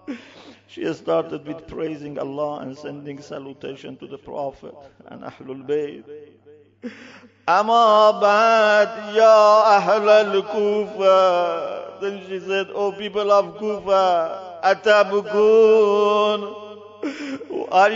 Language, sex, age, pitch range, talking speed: English, male, 50-69, 200-220 Hz, 75 wpm